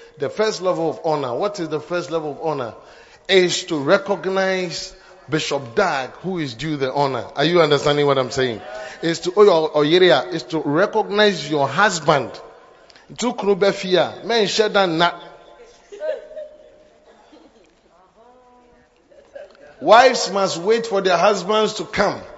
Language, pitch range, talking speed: English, 185-260 Hz, 125 wpm